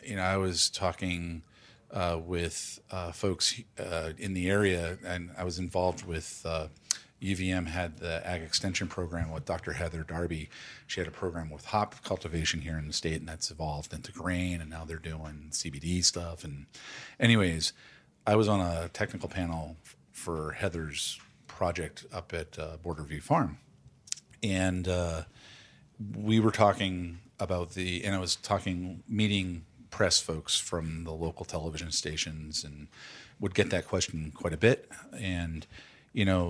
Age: 40-59